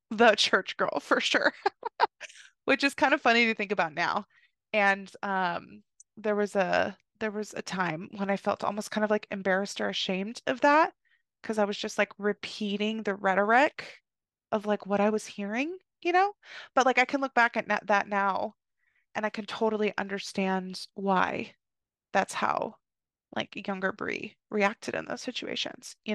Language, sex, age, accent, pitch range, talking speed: English, female, 20-39, American, 200-225 Hz, 175 wpm